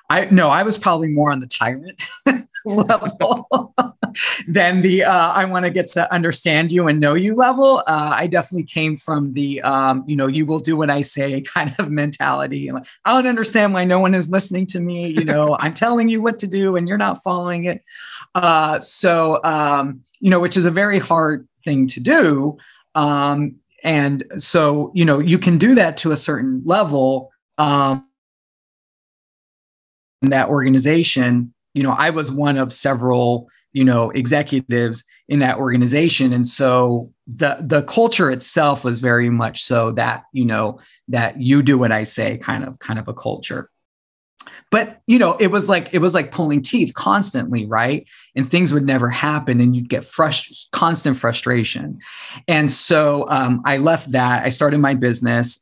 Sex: male